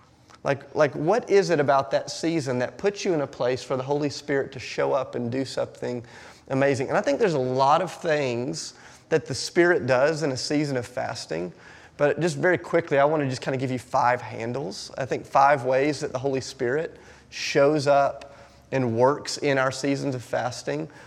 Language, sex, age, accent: English, male, 30-49, American